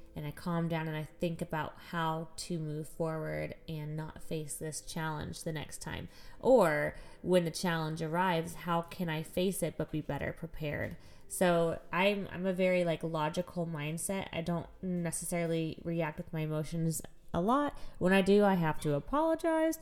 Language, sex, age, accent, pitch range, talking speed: English, female, 20-39, American, 155-180 Hz, 175 wpm